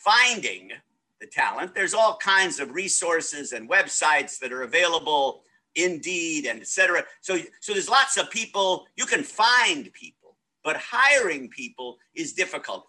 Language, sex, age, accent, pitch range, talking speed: English, male, 50-69, American, 185-290 Hz, 145 wpm